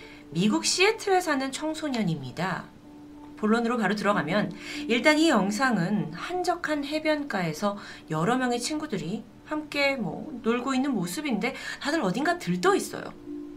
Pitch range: 195-295 Hz